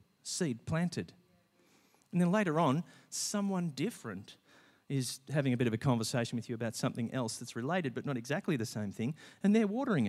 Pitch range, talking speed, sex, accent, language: 115-140 Hz, 185 wpm, male, Australian, English